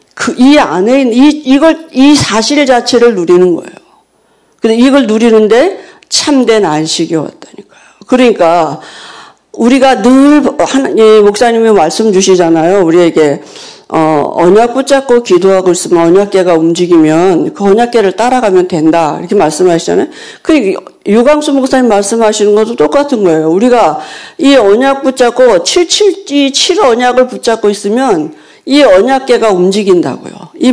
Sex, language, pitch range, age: female, Korean, 185-275 Hz, 50-69